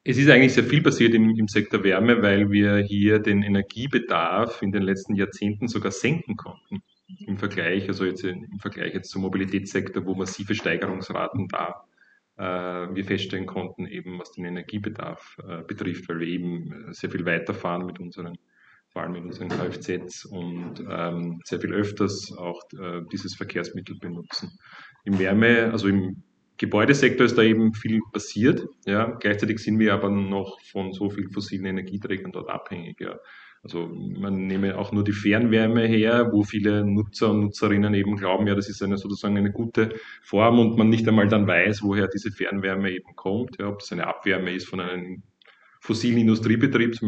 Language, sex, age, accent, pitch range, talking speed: German, male, 30-49, Austrian, 95-110 Hz, 175 wpm